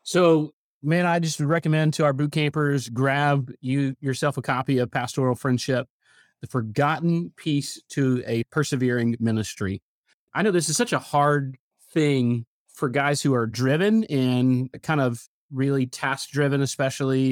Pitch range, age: 115-145 Hz, 30-49